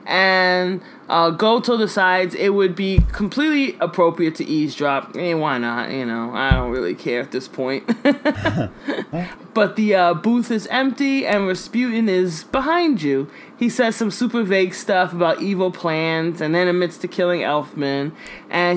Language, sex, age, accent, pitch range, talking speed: English, male, 20-39, American, 175-230 Hz, 165 wpm